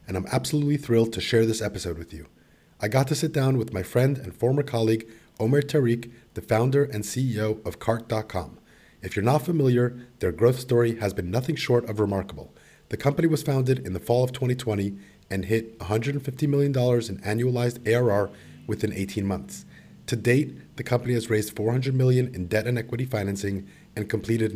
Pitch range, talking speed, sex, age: 100-125 Hz, 185 wpm, male, 30-49